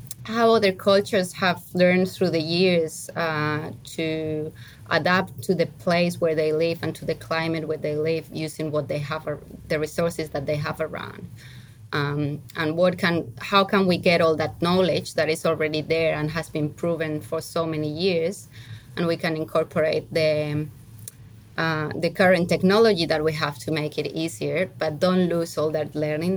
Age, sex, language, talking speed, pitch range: 20-39, female, English, 180 wpm, 150-175 Hz